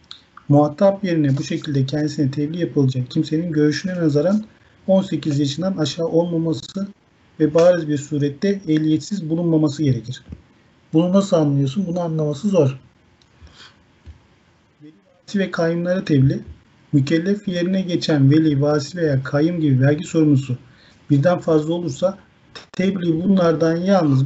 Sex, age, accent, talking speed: male, 50-69, native, 120 wpm